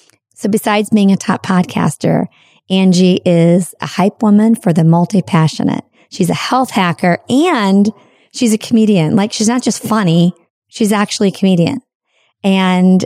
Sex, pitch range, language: female, 170-200 Hz, English